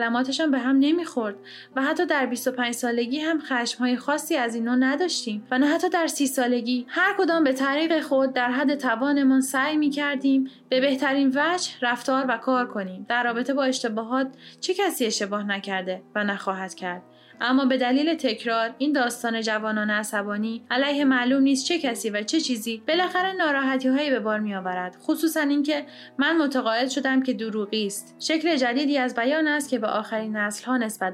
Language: Persian